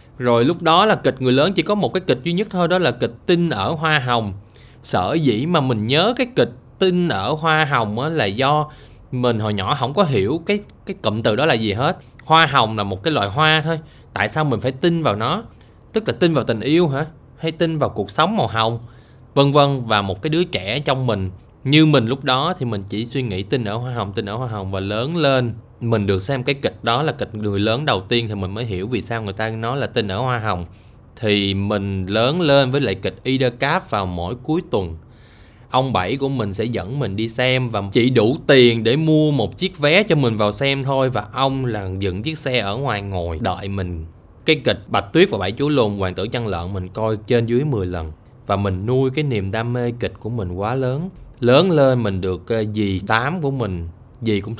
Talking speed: 240 wpm